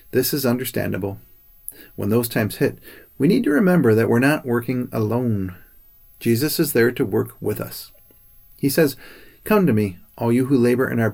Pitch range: 110-140 Hz